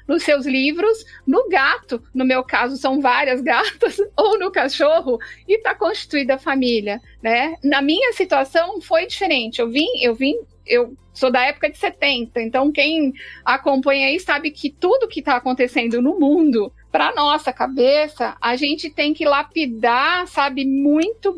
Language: Portuguese